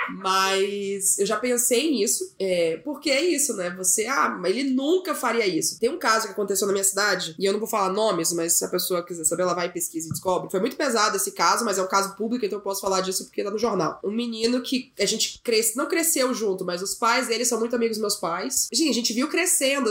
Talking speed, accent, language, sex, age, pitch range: 255 wpm, Brazilian, Portuguese, female, 20-39, 195-255 Hz